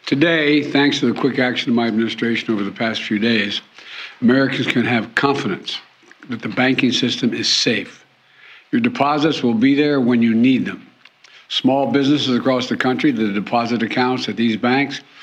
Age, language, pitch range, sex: 60-79, English, 115-135 Hz, male